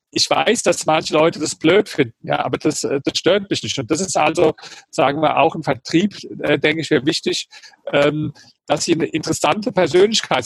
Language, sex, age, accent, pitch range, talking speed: German, male, 50-69, German, 145-170 Hz, 200 wpm